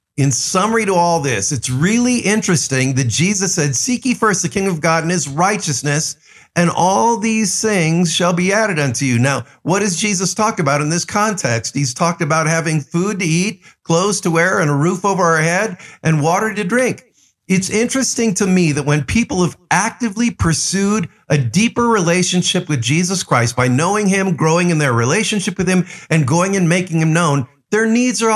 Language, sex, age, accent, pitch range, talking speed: English, male, 50-69, American, 140-210 Hz, 195 wpm